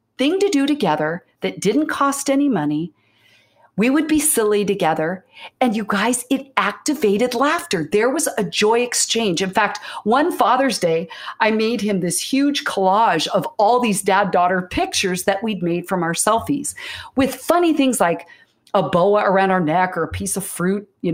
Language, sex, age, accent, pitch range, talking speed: English, female, 40-59, American, 175-255 Hz, 175 wpm